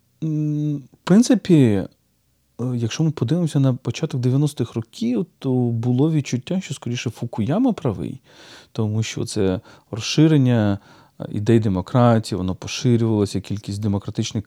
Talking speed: 110 wpm